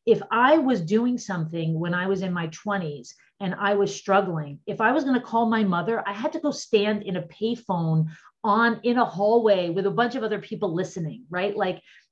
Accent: American